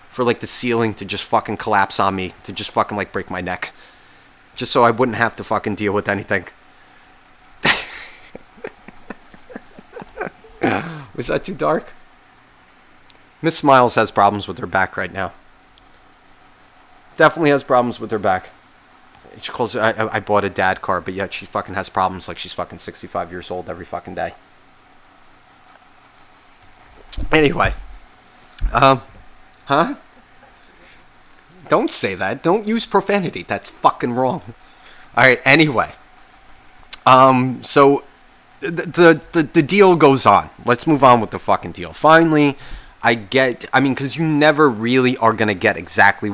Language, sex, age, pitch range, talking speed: English, male, 30-49, 95-135 Hz, 150 wpm